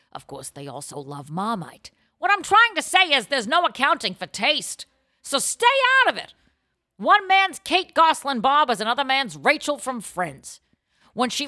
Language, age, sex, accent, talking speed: English, 50-69, female, American, 185 wpm